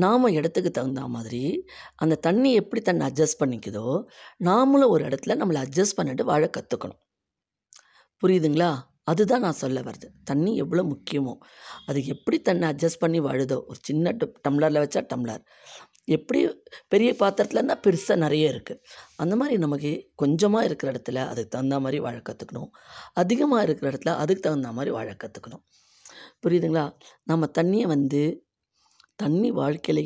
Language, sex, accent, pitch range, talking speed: Tamil, female, native, 130-180 Hz, 135 wpm